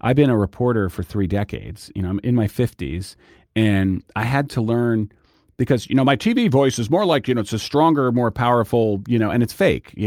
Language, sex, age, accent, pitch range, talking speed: English, male, 40-59, American, 90-110 Hz, 240 wpm